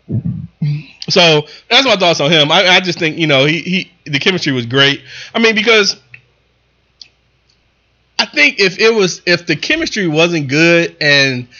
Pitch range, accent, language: 130-170 Hz, American, English